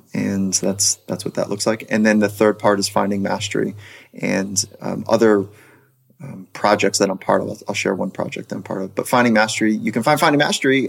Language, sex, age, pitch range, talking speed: English, male, 30-49, 100-120 Hz, 220 wpm